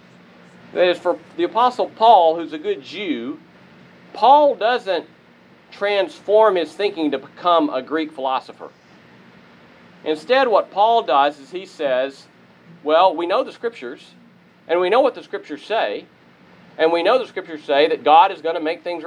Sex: male